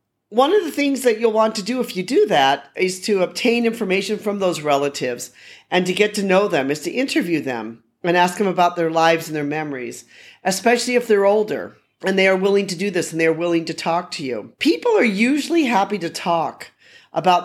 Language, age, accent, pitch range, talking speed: English, 40-59, American, 150-210 Hz, 225 wpm